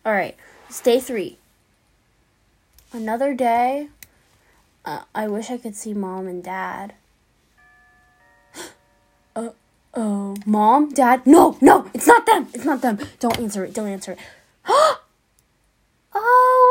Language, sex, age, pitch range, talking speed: English, female, 10-29, 210-295 Hz, 120 wpm